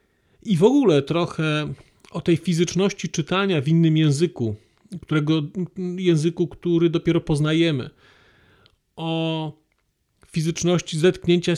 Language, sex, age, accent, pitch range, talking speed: Polish, male, 40-59, native, 130-175 Hz, 100 wpm